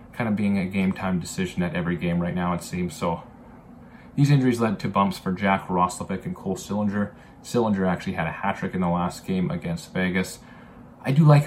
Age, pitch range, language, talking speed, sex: 20-39, 95-120 Hz, English, 215 wpm, male